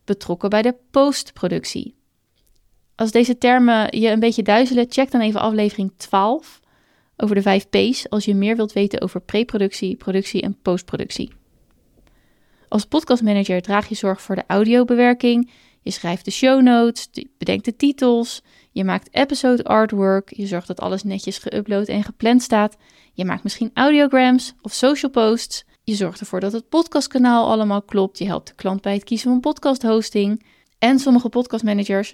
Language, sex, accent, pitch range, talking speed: Dutch, female, Dutch, 200-245 Hz, 160 wpm